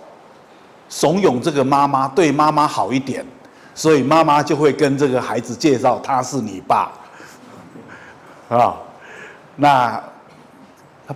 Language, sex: Chinese, male